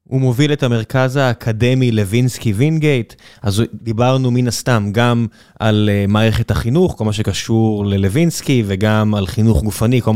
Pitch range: 115-145 Hz